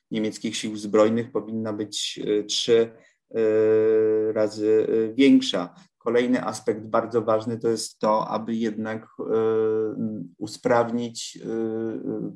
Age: 30-49